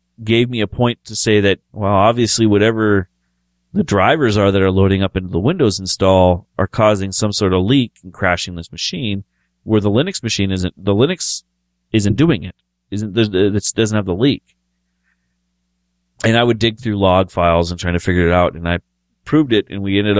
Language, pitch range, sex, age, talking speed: English, 80-105 Hz, male, 30-49, 200 wpm